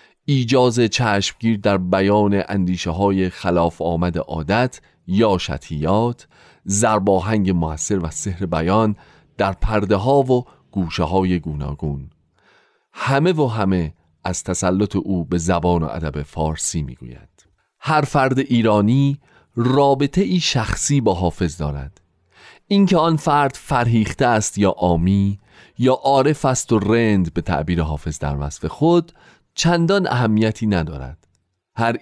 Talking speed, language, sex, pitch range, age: 120 wpm, Persian, male, 85-120 Hz, 40-59